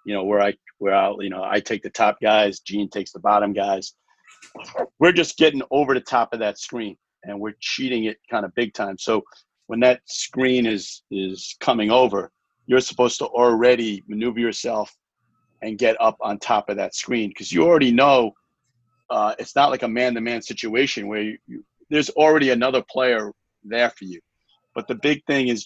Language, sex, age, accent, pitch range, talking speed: English, male, 40-59, American, 105-130 Hz, 200 wpm